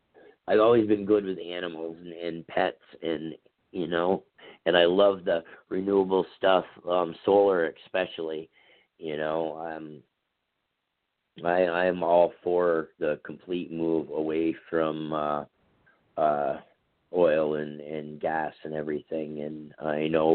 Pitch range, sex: 80-95 Hz, male